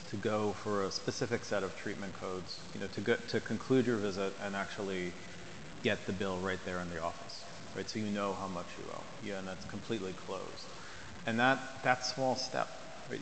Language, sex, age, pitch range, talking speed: English, male, 30-49, 95-115 Hz, 210 wpm